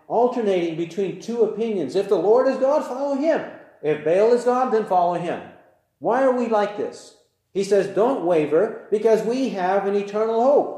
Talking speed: 185 wpm